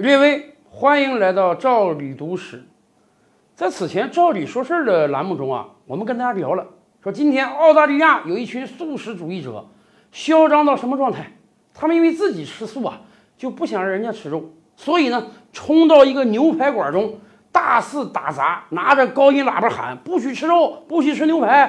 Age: 50-69